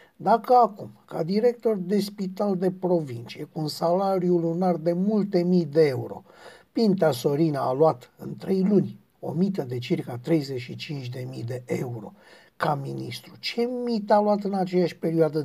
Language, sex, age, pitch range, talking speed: Romanian, male, 60-79, 165-210 Hz, 155 wpm